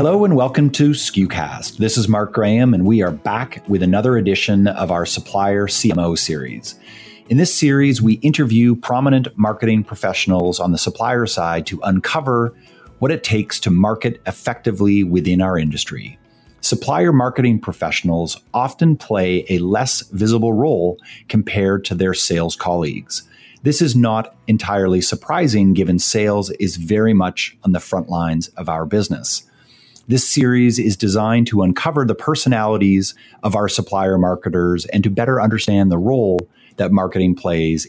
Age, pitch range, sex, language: 30-49, 90-120 Hz, male, English